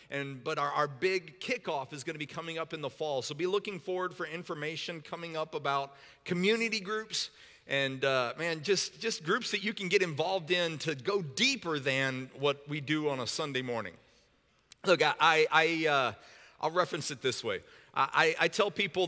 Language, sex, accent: English, male, American